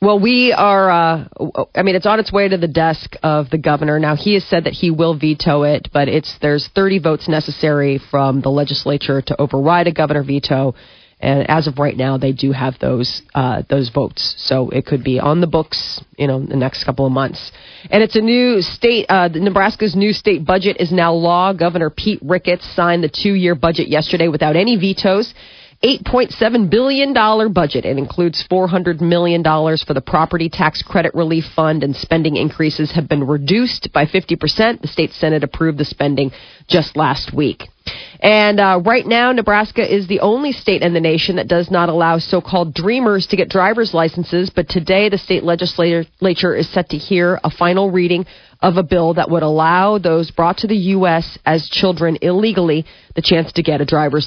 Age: 30-49